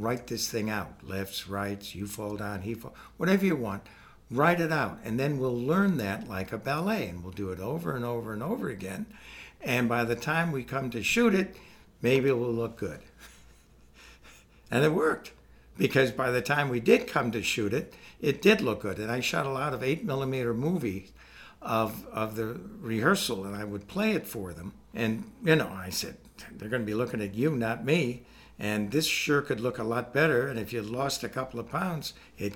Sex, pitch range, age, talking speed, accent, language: male, 105-140 Hz, 60-79, 215 wpm, American, English